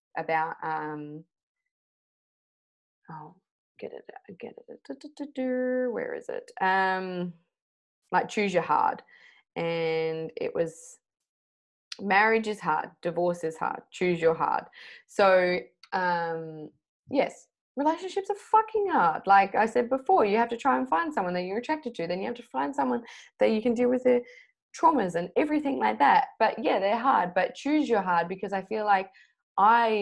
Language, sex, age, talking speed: English, female, 20-39, 160 wpm